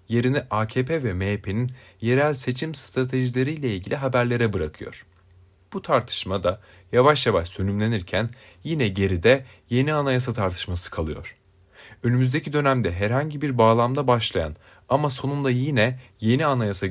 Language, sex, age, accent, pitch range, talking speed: Turkish, male, 30-49, native, 95-130 Hz, 115 wpm